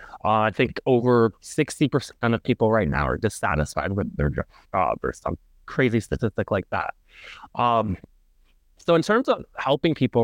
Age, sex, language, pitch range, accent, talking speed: 30-49, male, English, 105-135 Hz, American, 160 wpm